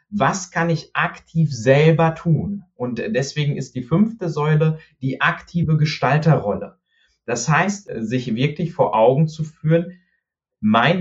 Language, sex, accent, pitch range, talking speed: German, male, German, 145-175 Hz, 130 wpm